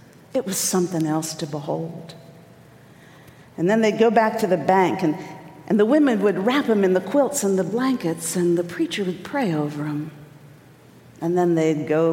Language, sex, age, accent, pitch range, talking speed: English, female, 50-69, American, 165-230 Hz, 190 wpm